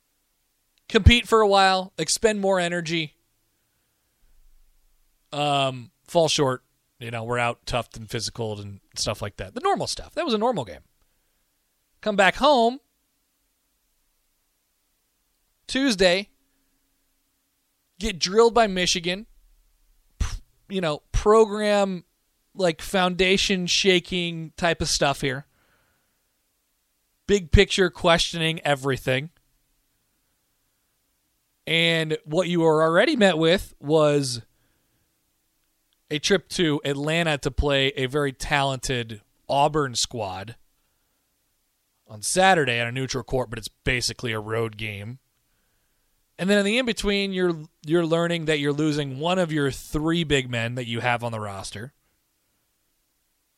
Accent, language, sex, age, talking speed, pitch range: American, English, male, 30-49, 115 wpm, 125-180 Hz